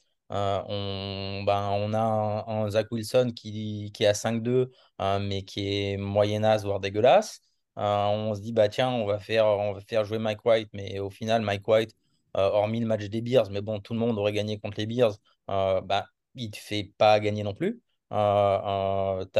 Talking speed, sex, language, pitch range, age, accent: 210 wpm, male, French, 100-115 Hz, 20-39, French